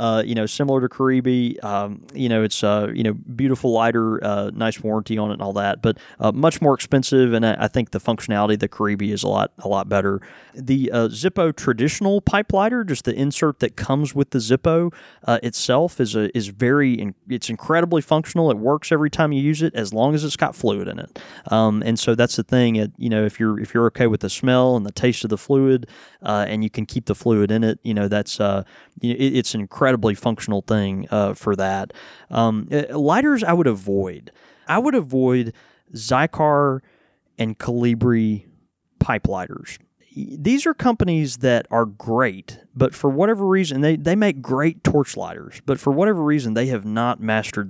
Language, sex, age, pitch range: English, male, 20-39, 110-145 Hz